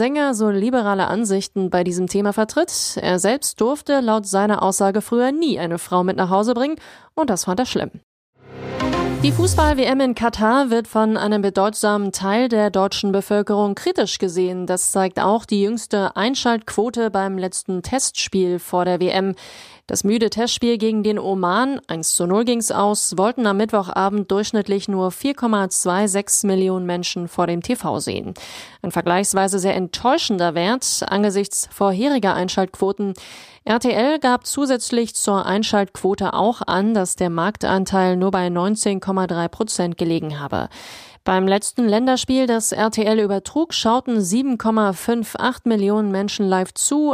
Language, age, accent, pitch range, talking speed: German, 30-49, German, 190-230 Hz, 145 wpm